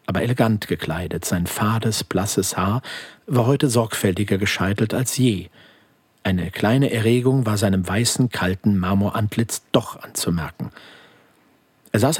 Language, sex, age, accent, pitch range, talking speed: German, male, 50-69, German, 100-130 Hz, 125 wpm